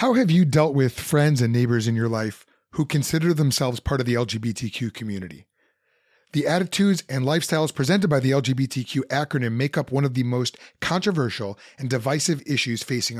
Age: 30-49